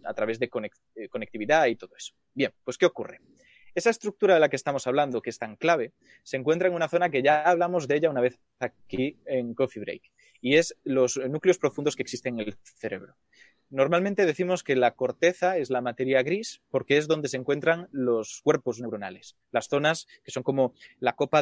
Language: Spanish